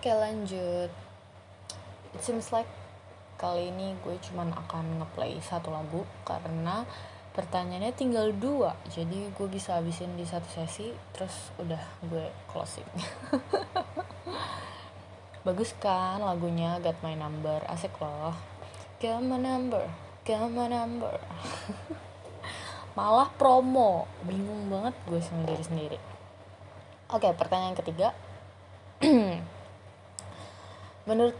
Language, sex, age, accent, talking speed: Indonesian, female, 20-39, native, 100 wpm